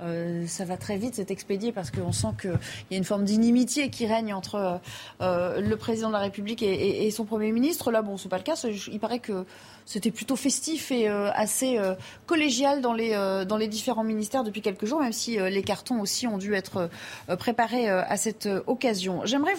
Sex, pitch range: female, 200-260 Hz